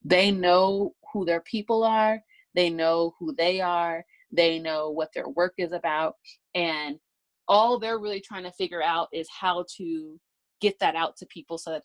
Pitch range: 160-210 Hz